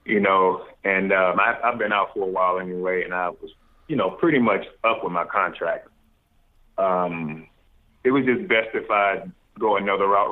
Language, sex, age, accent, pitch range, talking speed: English, male, 30-49, American, 90-115 Hz, 190 wpm